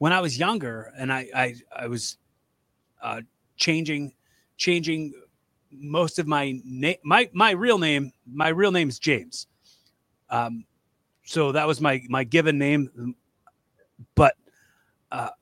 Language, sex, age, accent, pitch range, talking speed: English, male, 30-49, American, 130-175 Hz, 135 wpm